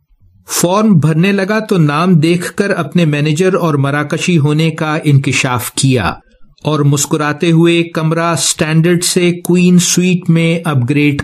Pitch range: 140-170 Hz